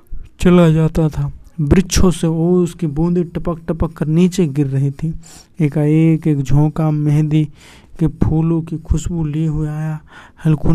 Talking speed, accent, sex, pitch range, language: 150 wpm, native, male, 145-155 Hz, Hindi